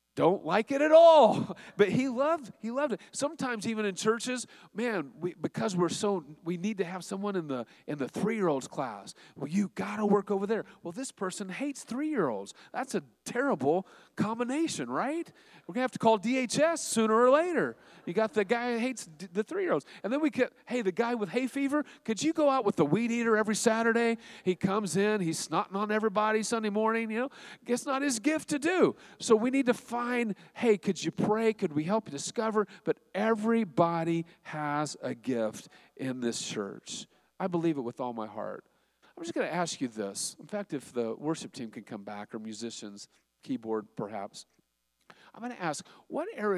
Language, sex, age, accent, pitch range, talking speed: English, male, 40-59, American, 150-235 Hz, 205 wpm